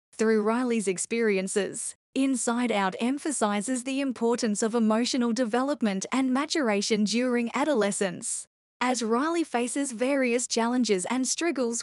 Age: 10-29